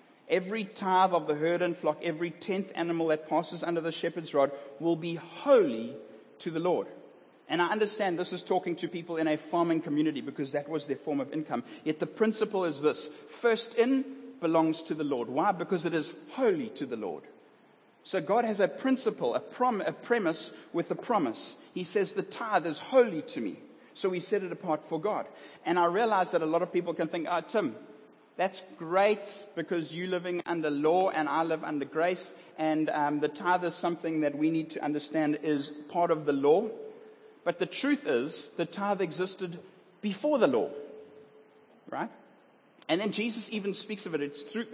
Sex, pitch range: male, 155-200 Hz